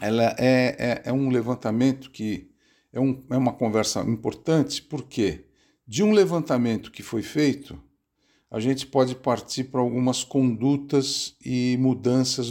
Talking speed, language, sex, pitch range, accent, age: 135 wpm, Portuguese, male, 110-145 Hz, Brazilian, 60-79